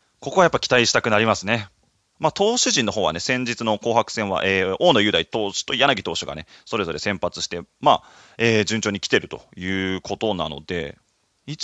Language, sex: Japanese, male